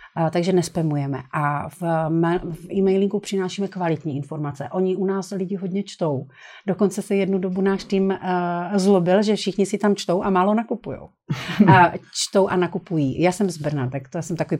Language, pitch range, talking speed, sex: Slovak, 165-195 Hz, 165 wpm, female